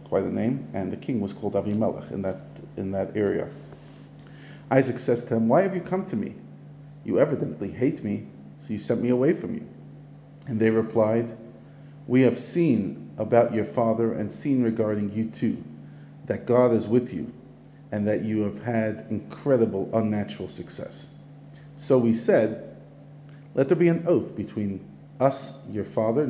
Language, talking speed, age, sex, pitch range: English, 170 wpm, 50-69, male, 110-145 Hz